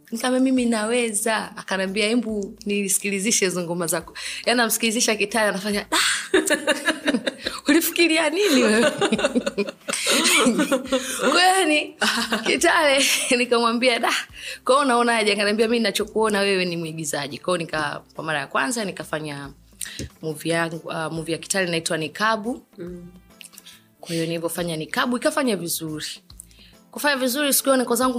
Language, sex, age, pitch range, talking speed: Swahili, female, 20-39, 170-255 Hz, 120 wpm